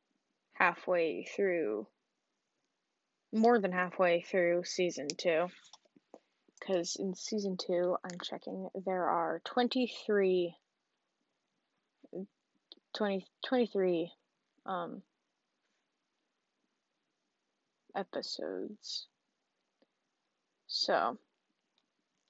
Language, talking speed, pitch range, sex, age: English, 60 wpm, 180-235 Hz, female, 10-29